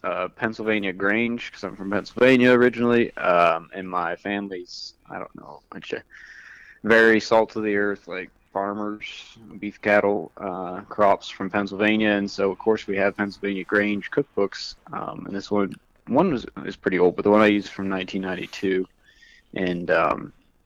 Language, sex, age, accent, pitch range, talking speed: English, male, 20-39, American, 95-105 Hz, 165 wpm